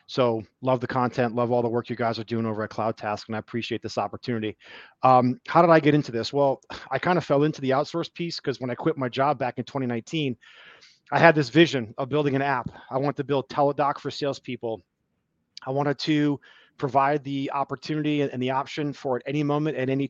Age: 30-49